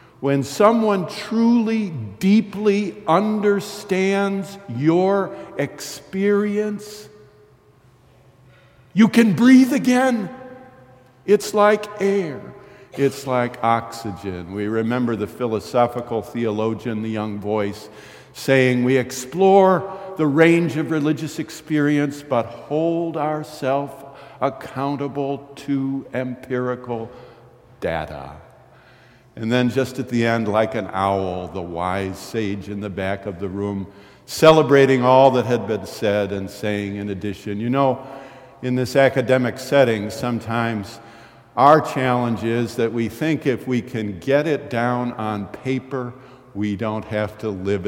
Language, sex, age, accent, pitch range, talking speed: English, male, 60-79, American, 110-150 Hz, 120 wpm